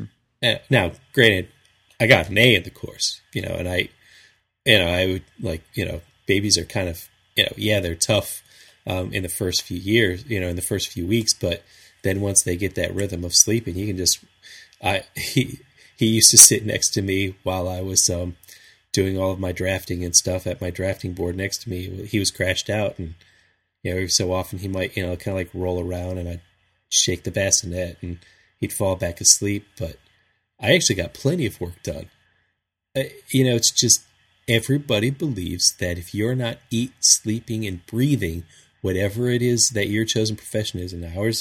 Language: English